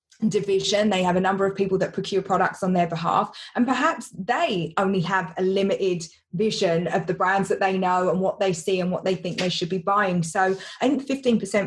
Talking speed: 215 wpm